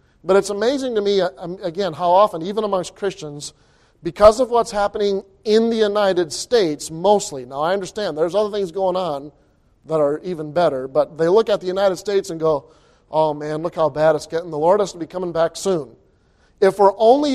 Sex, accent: male, American